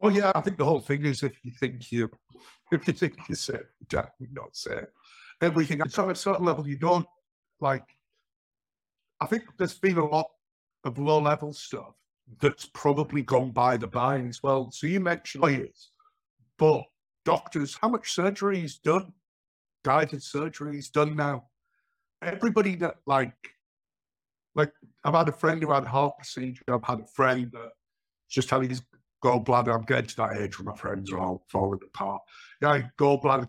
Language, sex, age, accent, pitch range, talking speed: English, male, 60-79, British, 125-165 Hz, 175 wpm